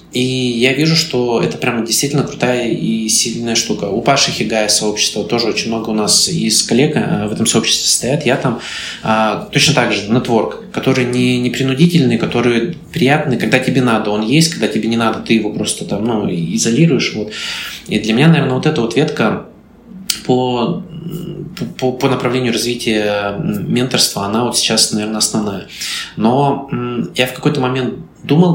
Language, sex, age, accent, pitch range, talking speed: Russian, male, 20-39, native, 110-145 Hz, 170 wpm